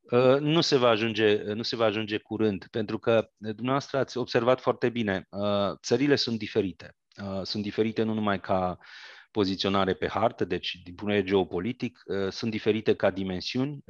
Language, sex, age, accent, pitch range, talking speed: Romanian, male, 30-49, native, 100-125 Hz, 145 wpm